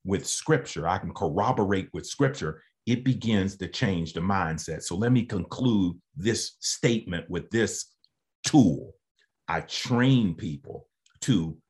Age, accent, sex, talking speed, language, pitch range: 50-69, American, male, 135 wpm, English, 90-125 Hz